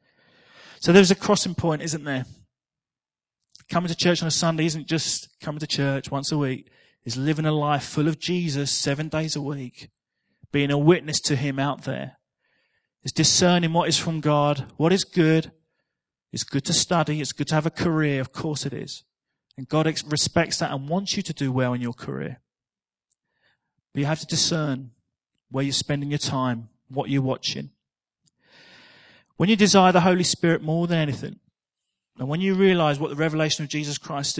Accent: British